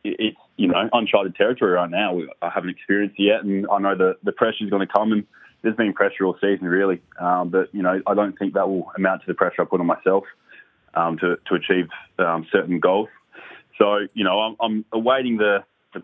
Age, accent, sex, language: 20-39, Australian, male, English